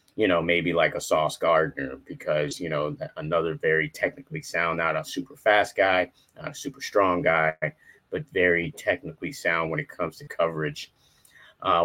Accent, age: American, 30-49